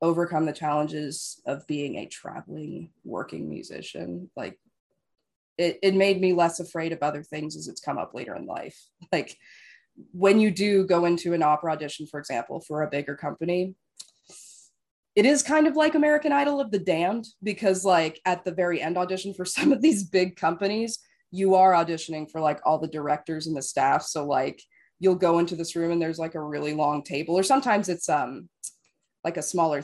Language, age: English, 20-39